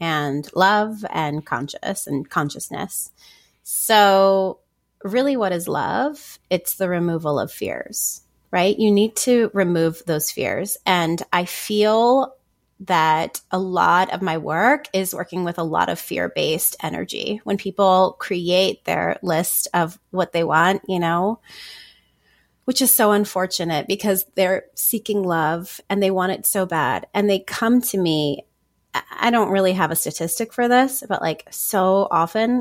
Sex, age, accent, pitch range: female, 30-49, American, 170-215 Hz